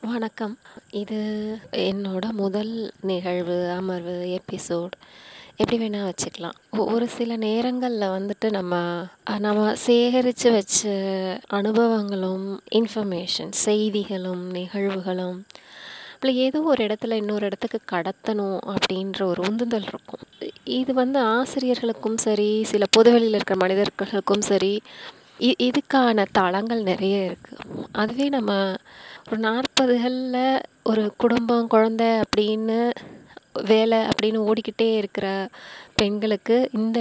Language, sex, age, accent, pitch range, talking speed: Tamil, female, 20-39, native, 195-235 Hz, 100 wpm